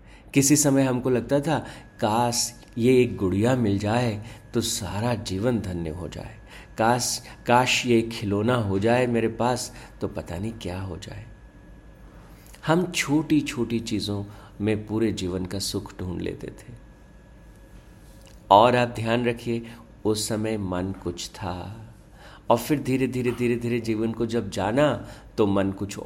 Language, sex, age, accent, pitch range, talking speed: Hindi, male, 50-69, native, 100-125 Hz, 150 wpm